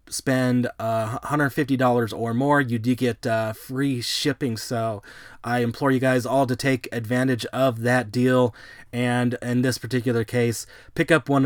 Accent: American